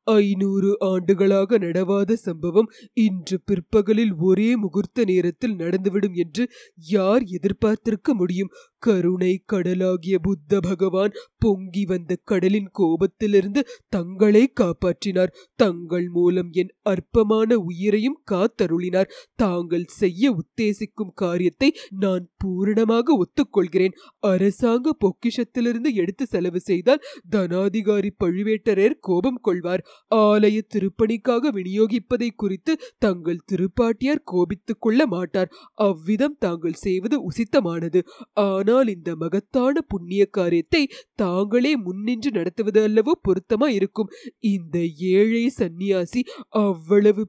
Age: 30-49